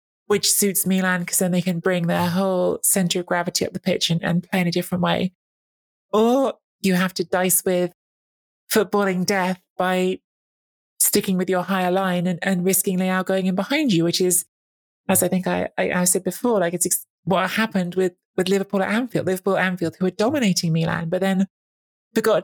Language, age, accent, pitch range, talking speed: English, 20-39, British, 175-195 Hz, 200 wpm